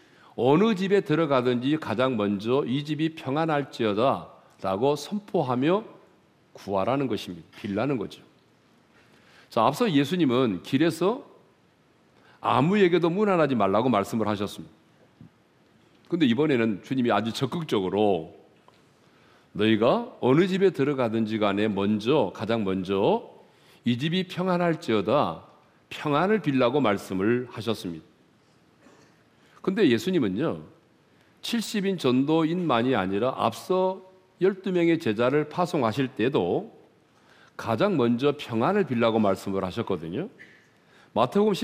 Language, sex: Korean, male